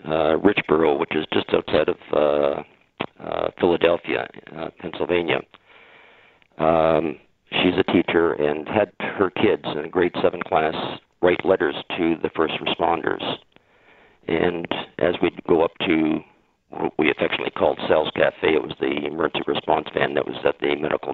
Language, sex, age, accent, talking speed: English, male, 50-69, American, 155 wpm